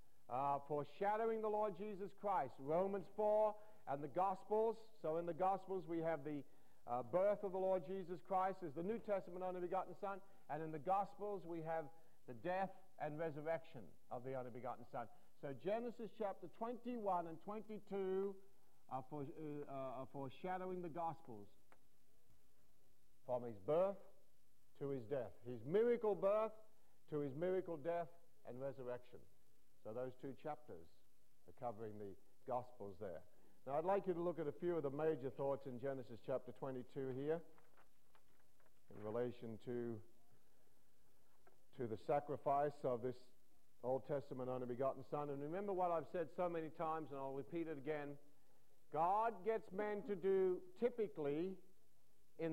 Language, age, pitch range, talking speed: English, 50-69, 135-190 Hz, 150 wpm